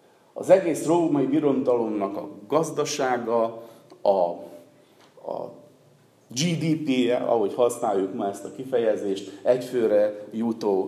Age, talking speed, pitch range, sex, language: 50-69, 95 wpm, 105-135 Hz, male, Hungarian